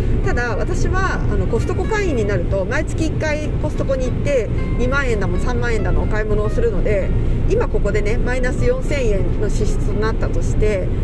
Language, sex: Japanese, female